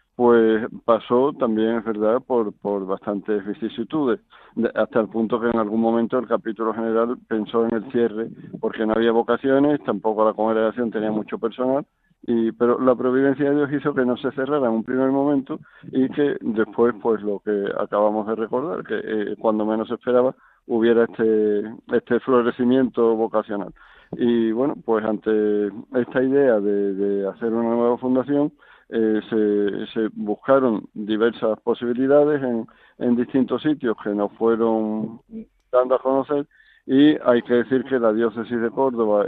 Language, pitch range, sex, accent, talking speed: Spanish, 110-125 Hz, male, Spanish, 160 wpm